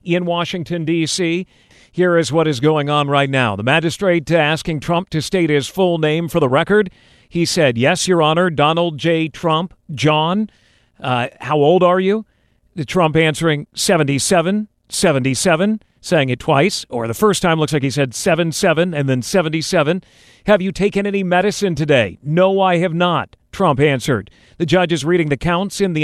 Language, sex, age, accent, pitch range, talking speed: English, male, 50-69, American, 150-180 Hz, 180 wpm